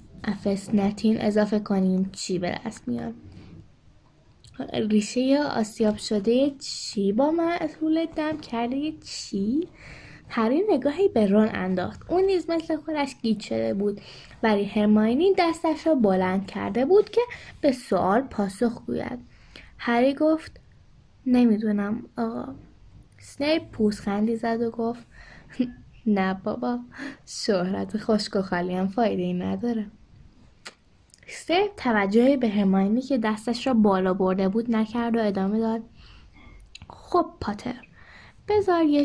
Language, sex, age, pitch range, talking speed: Persian, female, 10-29, 195-260 Hz, 115 wpm